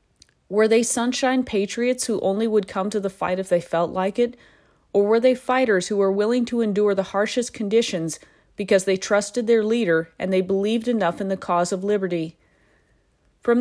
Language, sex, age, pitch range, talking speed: English, female, 30-49, 185-230 Hz, 190 wpm